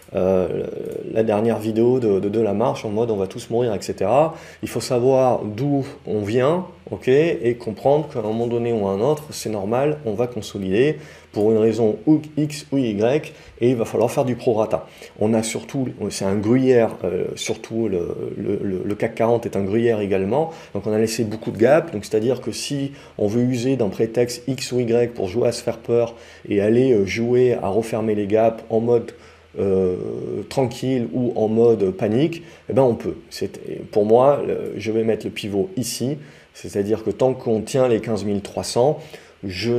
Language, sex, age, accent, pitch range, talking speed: French, male, 30-49, French, 100-120 Hz, 205 wpm